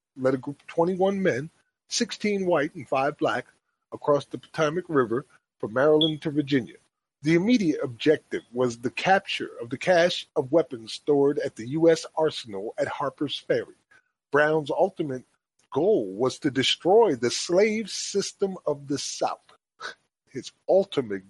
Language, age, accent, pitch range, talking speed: English, 40-59, American, 140-190 Hz, 145 wpm